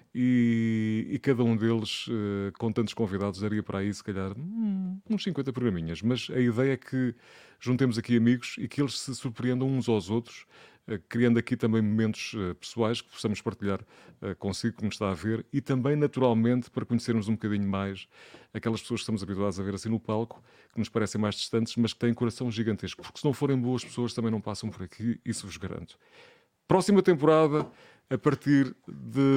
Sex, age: male, 30-49